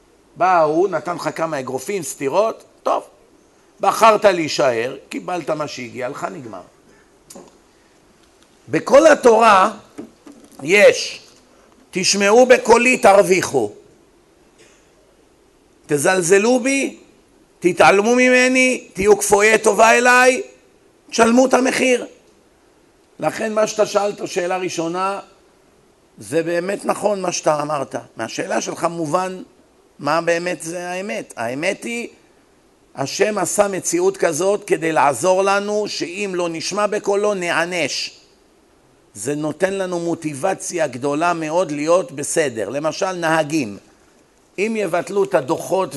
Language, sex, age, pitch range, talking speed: Hebrew, male, 50-69, 160-225 Hz, 105 wpm